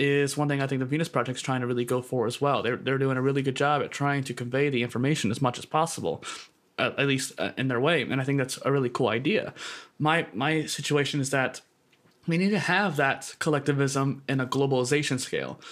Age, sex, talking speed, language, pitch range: 20-39, male, 235 wpm, English, 130-145 Hz